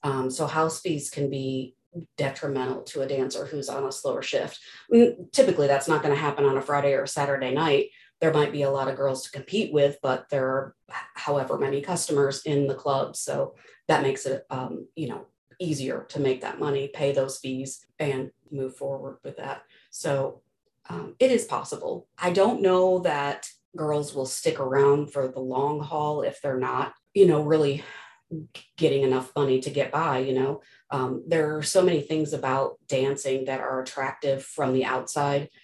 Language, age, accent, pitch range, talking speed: English, 30-49, American, 135-150 Hz, 190 wpm